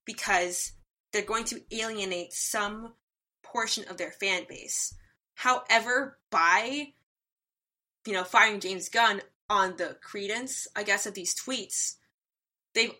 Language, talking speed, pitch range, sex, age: English, 125 wpm, 180-220 Hz, female, 20-39